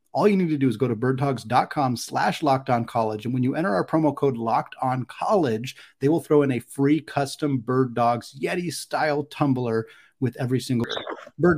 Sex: male